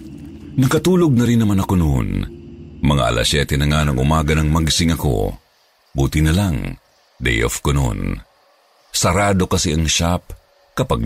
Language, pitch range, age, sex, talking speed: Filipino, 75-105 Hz, 50-69, male, 140 wpm